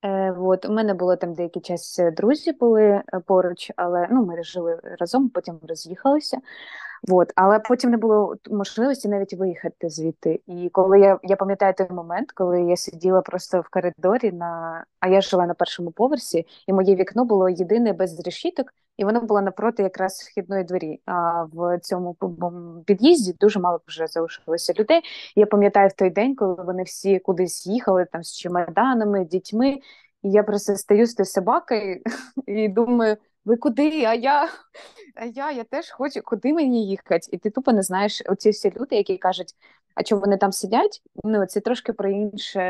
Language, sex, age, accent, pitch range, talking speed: Ukrainian, female, 20-39, native, 180-230 Hz, 175 wpm